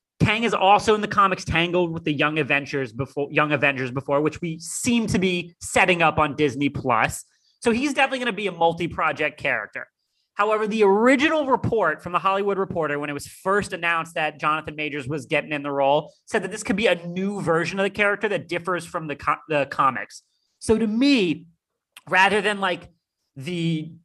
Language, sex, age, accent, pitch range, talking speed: English, male, 30-49, American, 150-195 Hz, 195 wpm